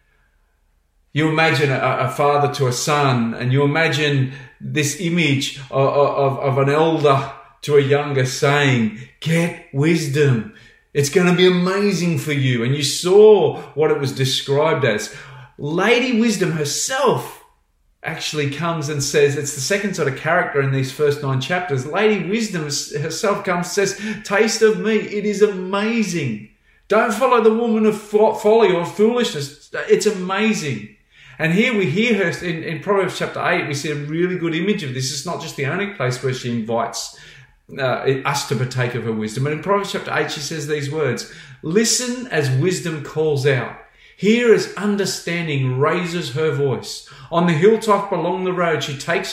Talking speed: 170 wpm